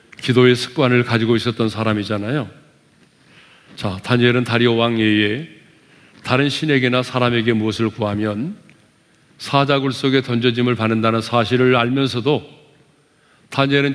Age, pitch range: 40-59, 120-150 Hz